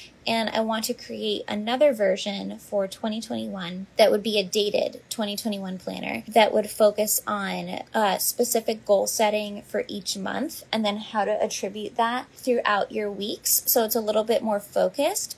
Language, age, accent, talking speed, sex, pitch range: English, 10-29, American, 170 wpm, female, 195-225 Hz